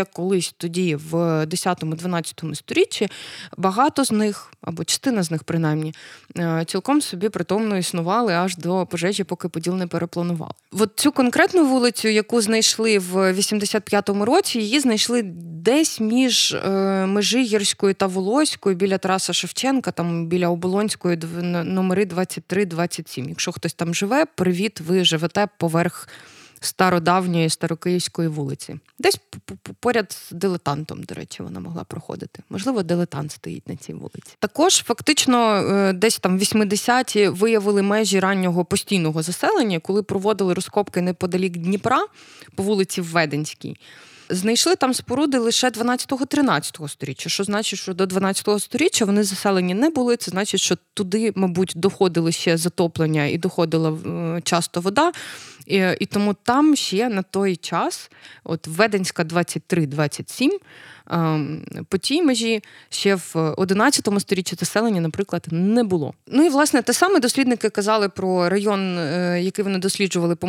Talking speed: 135 wpm